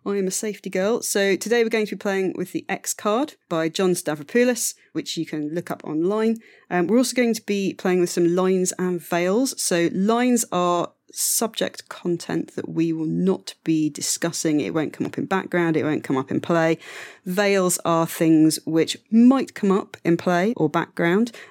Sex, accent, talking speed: female, British, 200 wpm